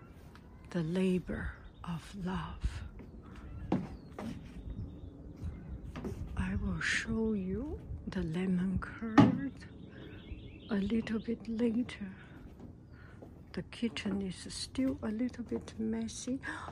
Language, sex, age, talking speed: English, female, 60-79, 85 wpm